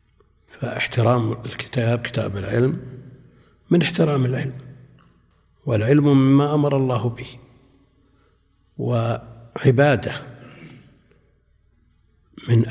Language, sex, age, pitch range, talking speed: Arabic, male, 60-79, 110-130 Hz, 65 wpm